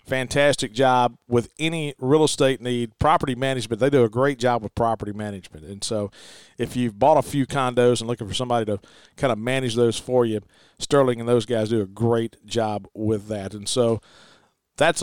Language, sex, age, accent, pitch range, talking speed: English, male, 40-59, American, 115-140 Hz, 195 wpm